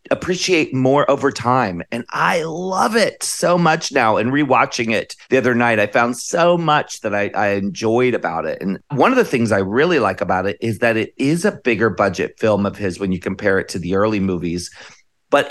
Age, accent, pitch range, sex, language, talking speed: 30-49, American, 100-135 Hz, male, English, 215 wpm